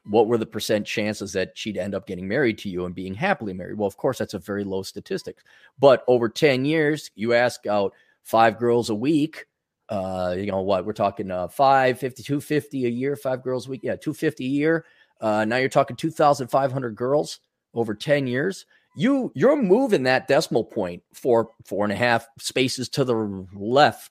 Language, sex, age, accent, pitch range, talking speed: English, male, 30-49, American, 100-135 Hz, 195 wpm